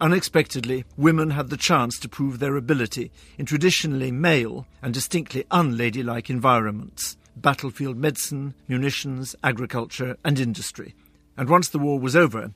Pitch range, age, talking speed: 125-155 Hz, 50-69, 135 wpm